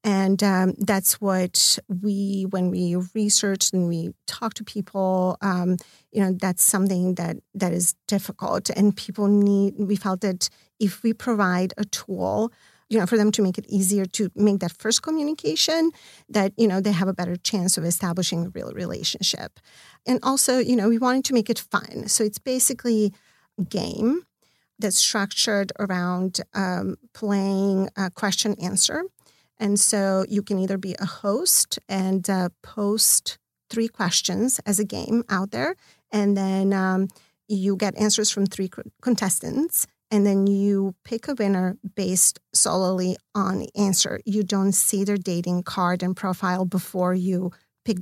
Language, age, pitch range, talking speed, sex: English, 40-59, 185-215 Hz, 160 wpm, female